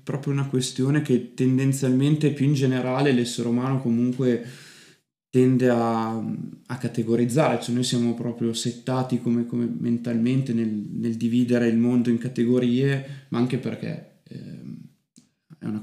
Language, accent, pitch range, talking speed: Italian, native, 120-135 Hz, 135 wpm